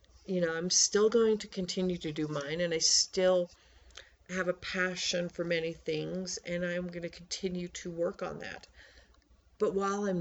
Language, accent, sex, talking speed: English, American, female, 180 wpm